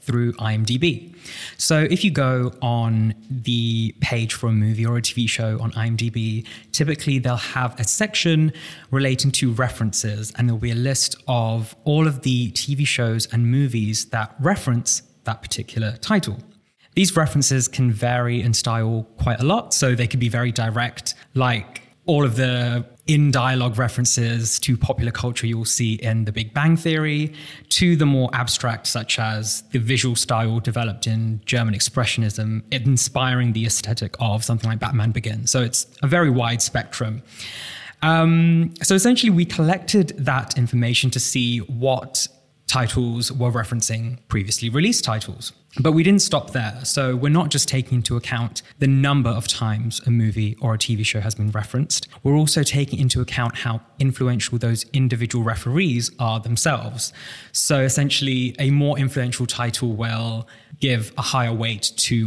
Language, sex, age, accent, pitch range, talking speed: English, male, 20-39, British, 115-135 Hz, 160 wpm